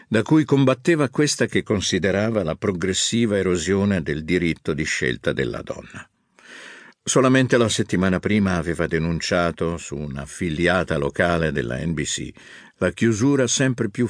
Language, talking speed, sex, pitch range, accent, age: Italian, 130 wpm, male, 90-115 Hz, native, 50-69